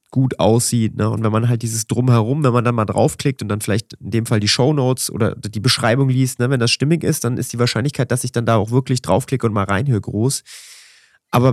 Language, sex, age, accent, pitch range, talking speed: German, male, 30-49, German, 110-135 Hz, 245 wpm